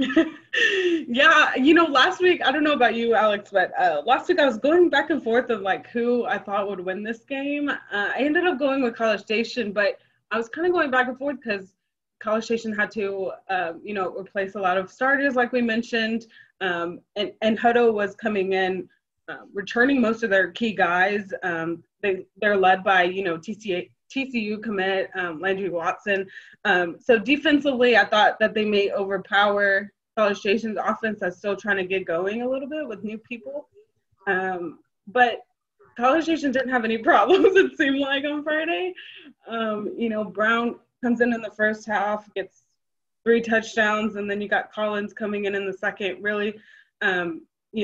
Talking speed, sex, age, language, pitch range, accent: 190 wpm, female, 20-39, English, 195-260 Hz, American